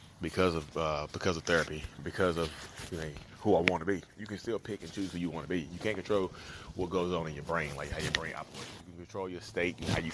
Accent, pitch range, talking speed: American, 80-95 Hz, 285 wpm